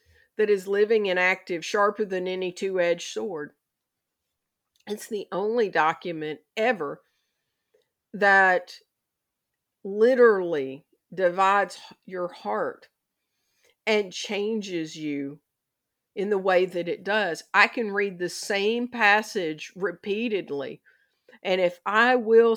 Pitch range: 175-225 Hz